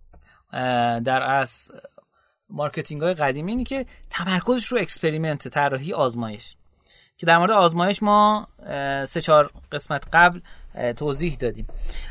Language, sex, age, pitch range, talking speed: Persian, male, 30-49, 140-220 Hz, 110 wpm